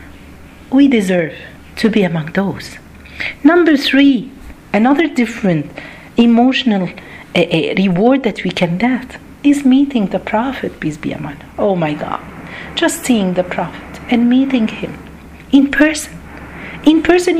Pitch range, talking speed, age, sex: 165-260 Hz, 140 wpm, 50-69, female